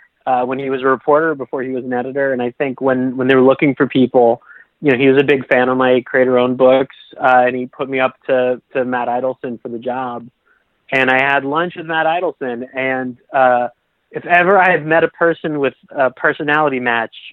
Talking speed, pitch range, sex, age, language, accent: 225 wpm, 130-155 Hz, male, 30-49, English, American